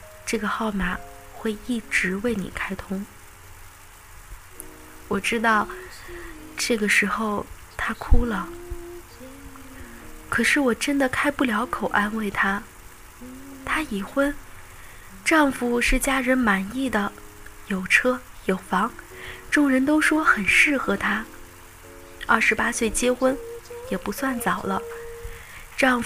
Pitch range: 190-255 Hz